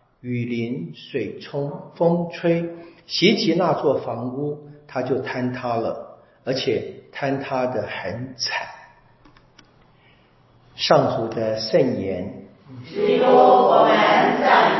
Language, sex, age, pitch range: Chinese, male, 50-69, 115-135 Hz